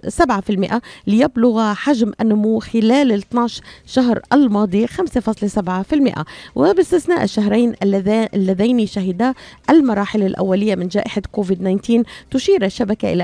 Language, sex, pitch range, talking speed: Arabic, female, 200-250 Hz, 100 wpm